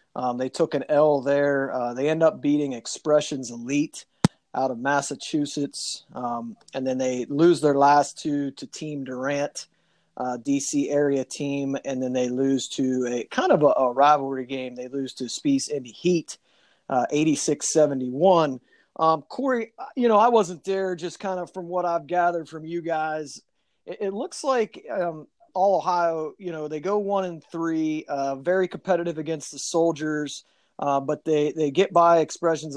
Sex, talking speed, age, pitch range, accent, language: male, 175 wpm, 30-49, 140-170 Hz, American, English